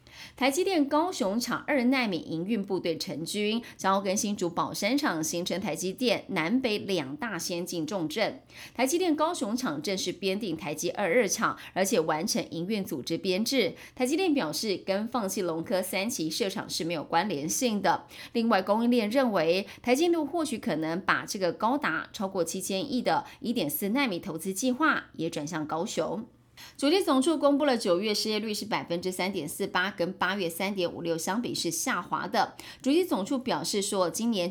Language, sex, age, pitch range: Chinese, female, 30-49, 175-255 Hz